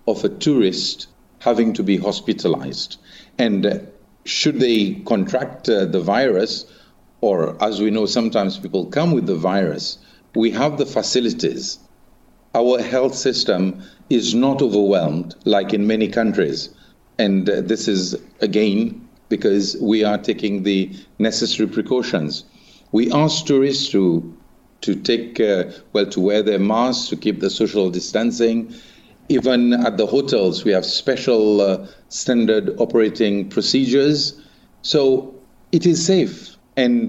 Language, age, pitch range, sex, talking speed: English, 50-69, 100-130 Hz, male, 135 wpm